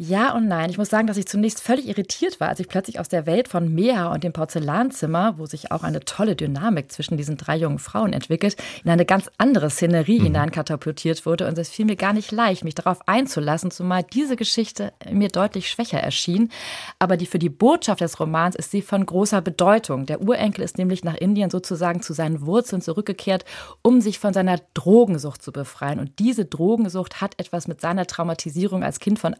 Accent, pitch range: German, 165-200 Hz